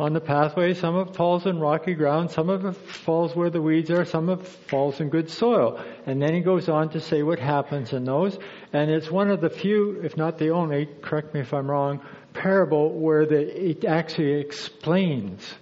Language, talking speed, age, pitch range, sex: English, 220 wpm, 50-69, 135-165 Hz, male